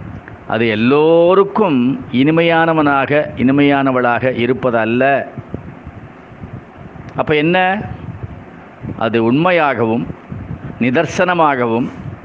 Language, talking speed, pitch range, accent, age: Tamil, 50 wpm, 125-175 Hz, native, 50-69